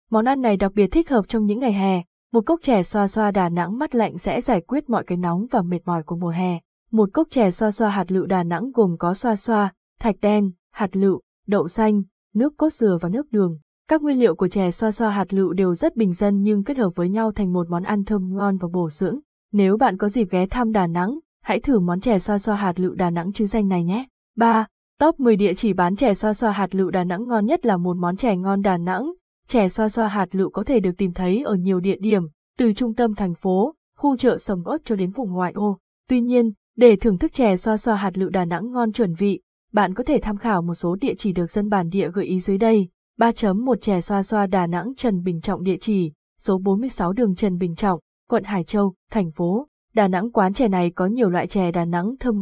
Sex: female